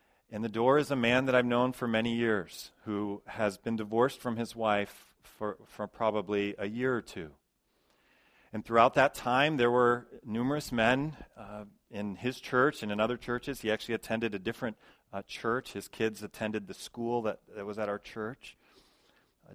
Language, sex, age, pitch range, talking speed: English, male, 40-59, 105-125 Hz, 185 wpm